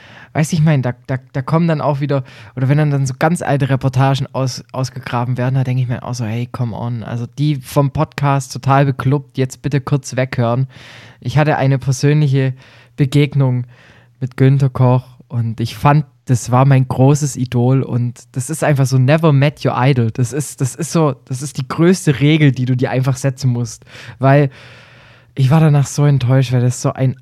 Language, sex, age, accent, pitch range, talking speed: German, male, 20-39, German, 120-145 Hz, 205 wpm